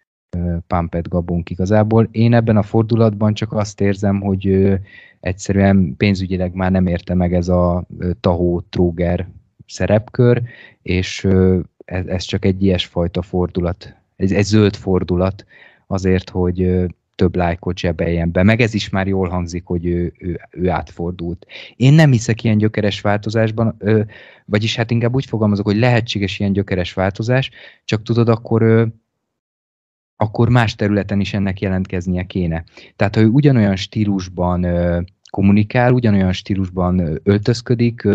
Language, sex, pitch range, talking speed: Hungarian, male, 90-110 Hz, 130 wpm